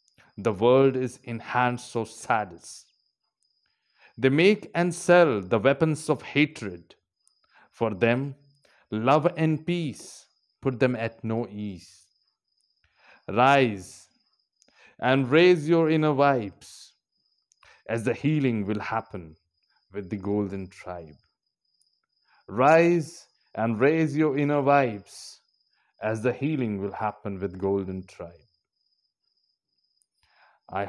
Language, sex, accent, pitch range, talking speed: Hindi, male, native, 100-135 Hz, 105 wpm